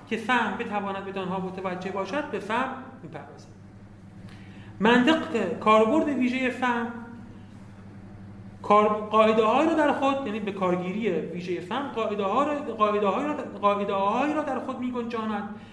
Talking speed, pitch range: 140 wpm, 155-235 Hz